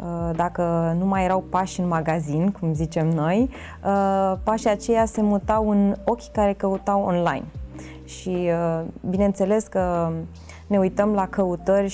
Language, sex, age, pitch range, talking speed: Romanian, female, 20-39, 170-220 Hz, 130 wpm